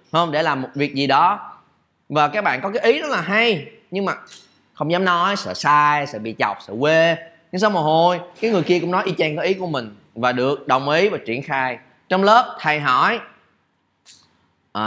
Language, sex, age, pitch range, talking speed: Vietnamese, male, 20-39, 135-205 Hz, 220 wpm